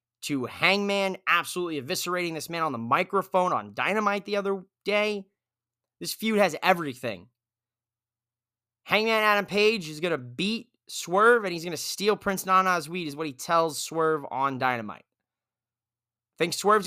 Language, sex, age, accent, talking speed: English, male, 20-39, American, 155 wpm